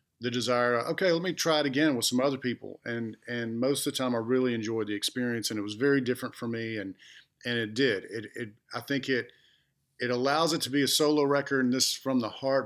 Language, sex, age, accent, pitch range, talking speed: English, male, 40-59, American, 120-145 Hz, 245 wpm